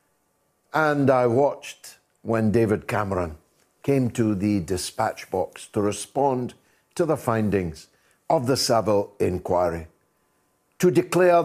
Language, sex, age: English, male, 60-79